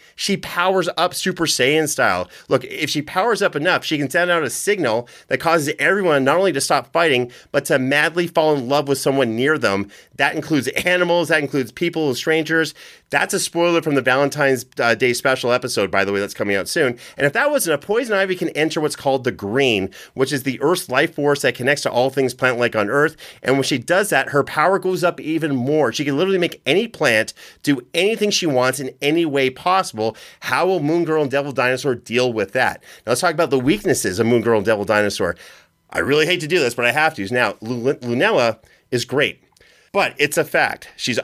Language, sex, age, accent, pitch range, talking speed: English, male, 30-49, American, 125-160 Hz, 225 wpm